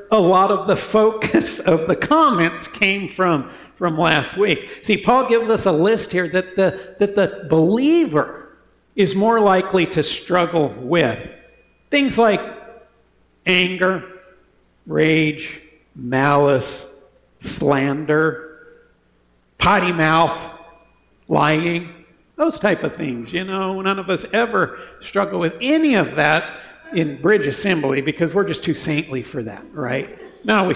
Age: 50-69